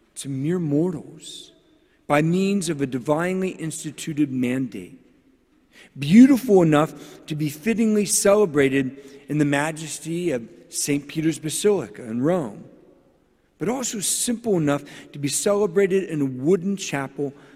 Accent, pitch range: American, 135-175 Hz